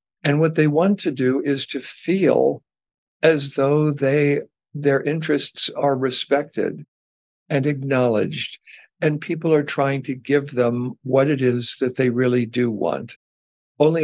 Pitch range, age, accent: 125-155 Hz, 60-79, American